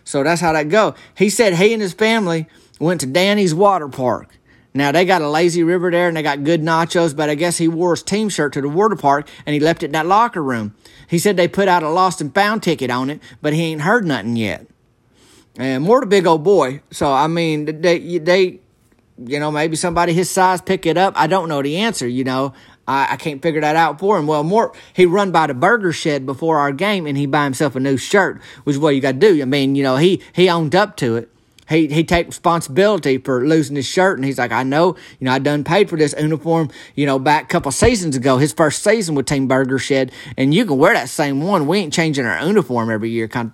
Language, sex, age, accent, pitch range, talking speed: English, male, 30-49, American, 135-175 Hz, 255 wpm